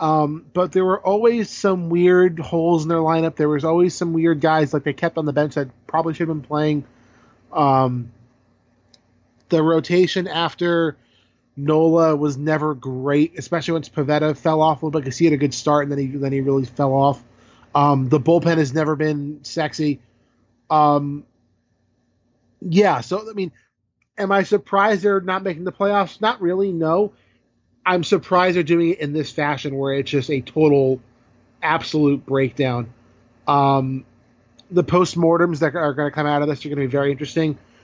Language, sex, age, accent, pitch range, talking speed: English, male, 20-39, American, 130-165 Hz, 180 wpm